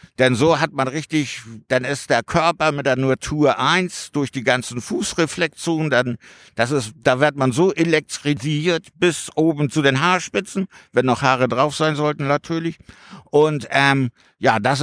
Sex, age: male, 60-79